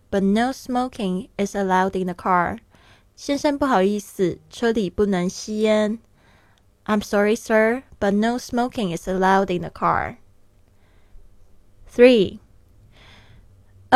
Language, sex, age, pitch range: Chinese, female, 20-39, 175-225 Hz